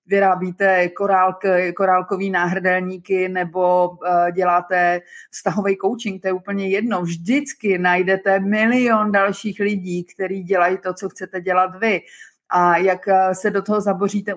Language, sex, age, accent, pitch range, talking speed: Czech, female, 30-49, native, 185-205 Hz, 125 wpm